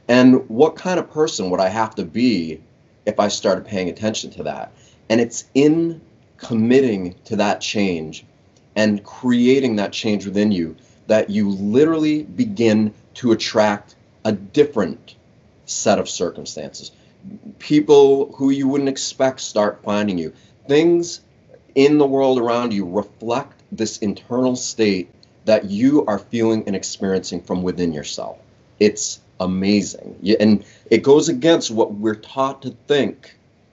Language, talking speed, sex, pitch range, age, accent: English, 140 wpm, male, 100-135 Hz, 30-49, American